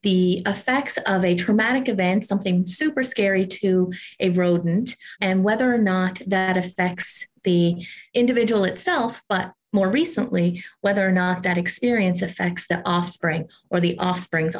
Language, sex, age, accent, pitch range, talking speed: English, female, 30-49, American, 175-215 Hz, 145 wpm